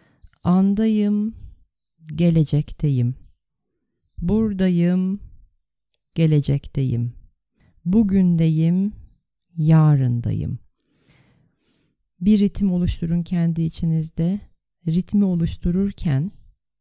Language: Turkish